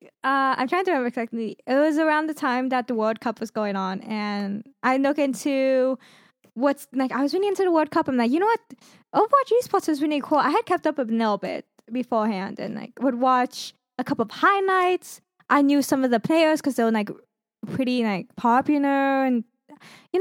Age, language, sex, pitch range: 10-29, English, female, 235-310 Hz